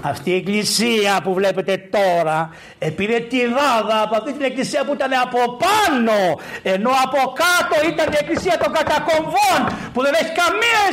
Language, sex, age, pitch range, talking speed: Greek, male, 60-79, 165-275 Hz, 150 wpm